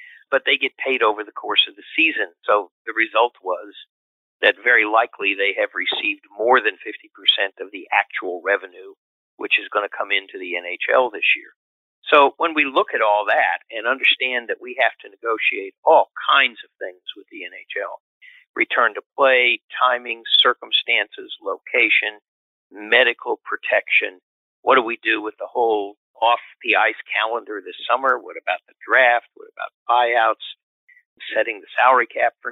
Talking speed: 170 wpm